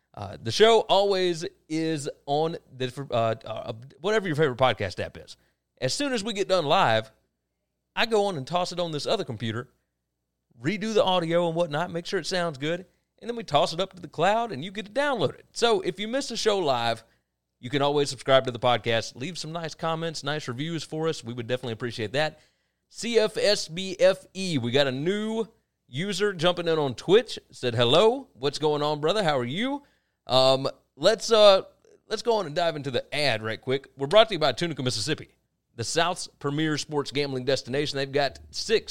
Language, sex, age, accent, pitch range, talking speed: English, male, 30-49, American, 130-185 Hz, 205 wpm